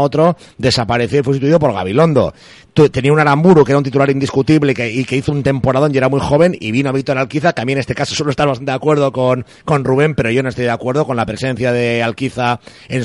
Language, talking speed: Spanish, 245 wpm